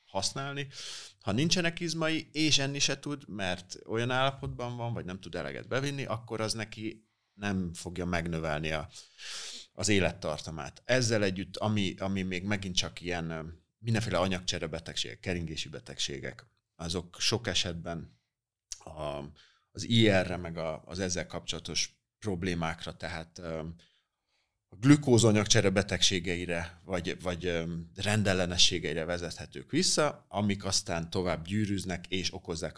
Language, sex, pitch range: Hungarian, male, 85-110 Hz